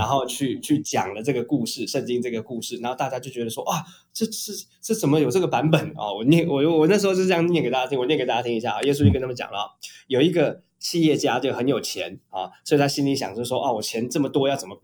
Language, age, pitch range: Chinese, 20-39, 115-150 Hz